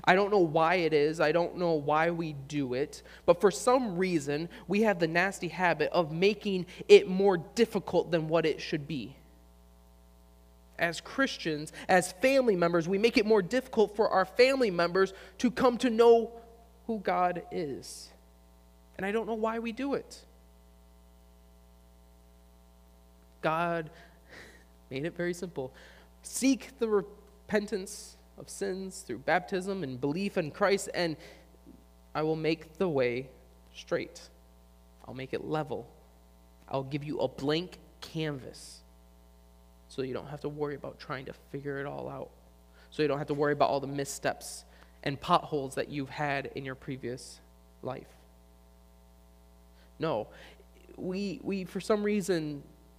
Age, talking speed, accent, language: 20-39, 150 wpm, American, English